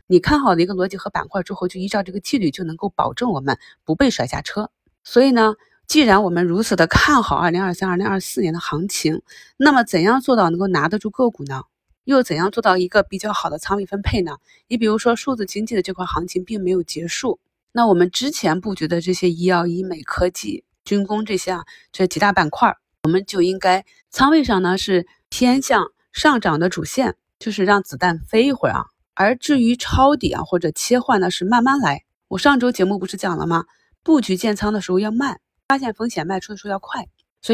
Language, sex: Chinese, female